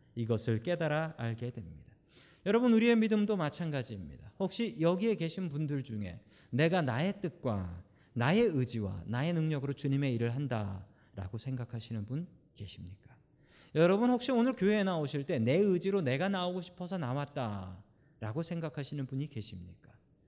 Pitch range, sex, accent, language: 120-195 Hz, male, native, Korean